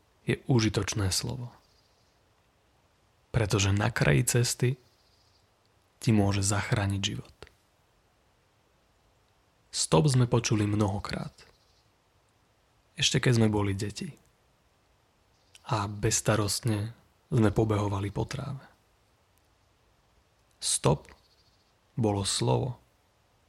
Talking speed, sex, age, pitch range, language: 70 wpm, male, 30-49, 100-120 Hz, Slovak